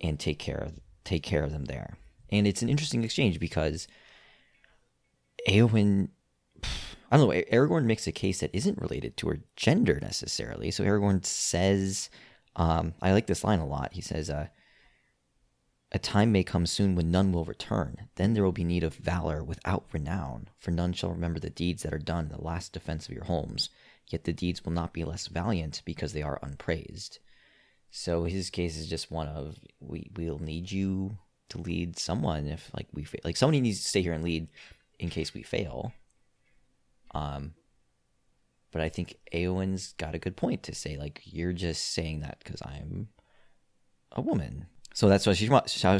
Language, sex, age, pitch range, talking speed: English, male, 30-49, 80-95 Hz, 185 wpm